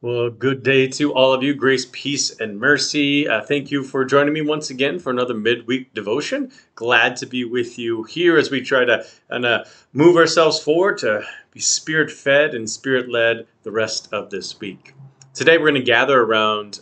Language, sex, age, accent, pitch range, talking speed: English, male, 40-59, American, 110-135 Hz, 190 wpm